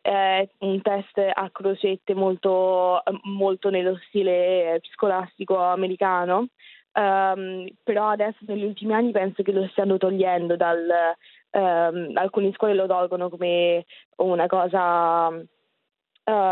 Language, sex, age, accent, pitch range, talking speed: Italian, female, 20-39, native, 175-195 Hz, 115 wpm